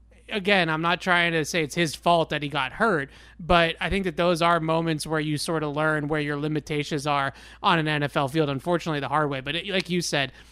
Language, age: English, 30-49